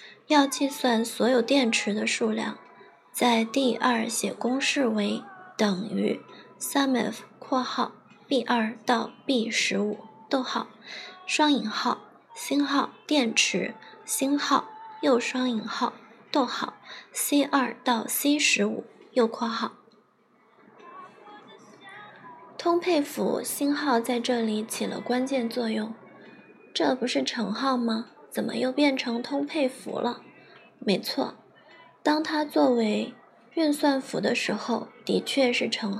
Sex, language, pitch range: female, Chinese, 230-285 Hz